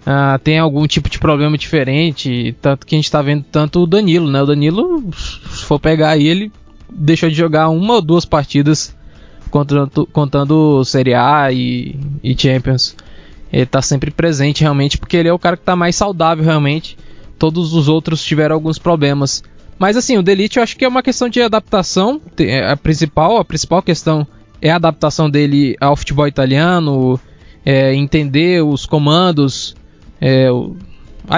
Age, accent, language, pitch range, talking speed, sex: 20-39, Brazilian, Portuguese, 135-165 Hz, 165 wpm, male